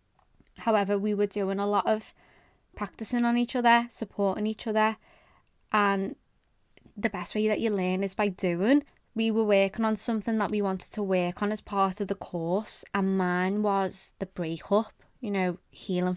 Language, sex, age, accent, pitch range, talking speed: English, female, 20-39, British, 185-210 Hz, 180 wpm